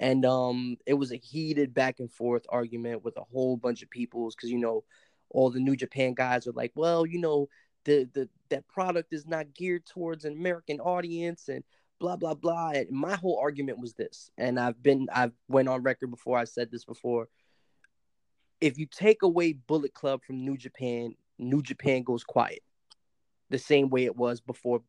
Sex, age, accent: male, 20-39, American